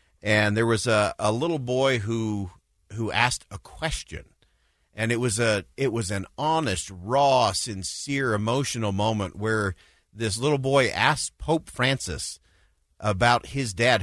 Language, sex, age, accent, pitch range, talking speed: English, male, 40-59, American, 90-125 Hz, 145 wpm